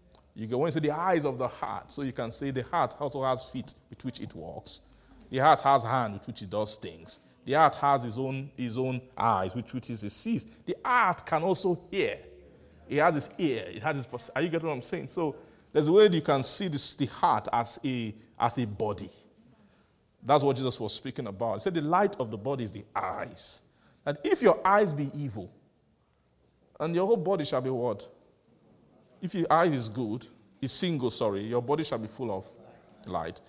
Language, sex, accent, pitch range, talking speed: English, male, Nigerian, 110-160 Hz, 215 wpm